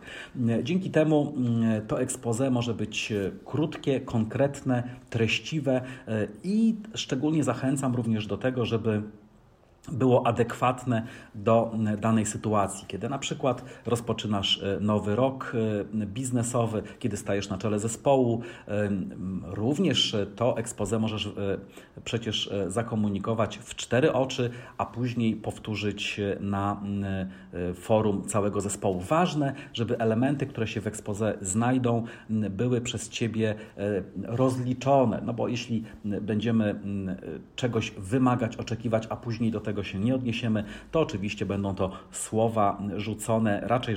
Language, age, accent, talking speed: Polish, 40-59, native, 115 wpm